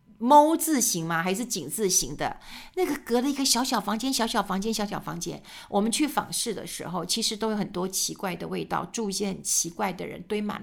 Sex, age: female, 50-69